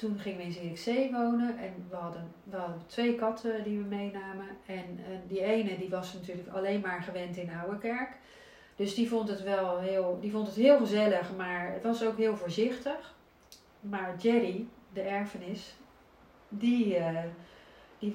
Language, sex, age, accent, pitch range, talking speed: Dutch, female, 40-59, Dutch, 185-230 Hz, 170 wpm